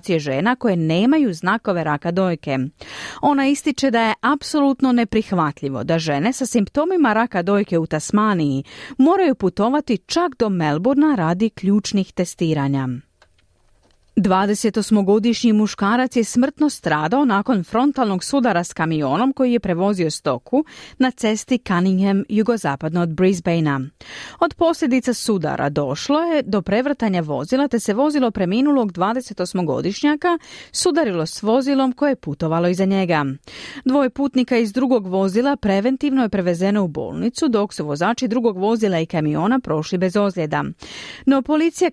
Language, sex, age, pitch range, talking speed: Croatian, female, 40-59, 165-255 Hz, 130 wpm